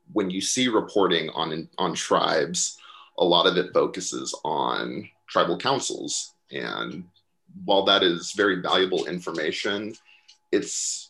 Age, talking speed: 30-49, 125 wpm